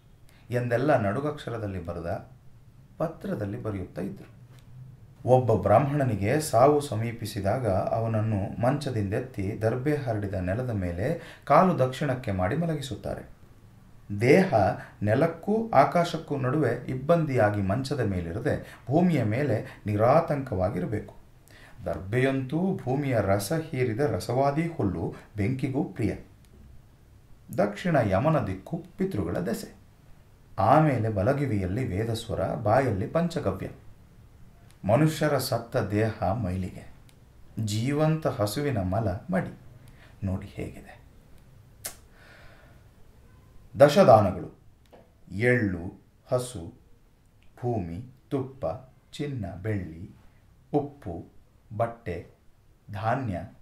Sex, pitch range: male, 105-145 Hz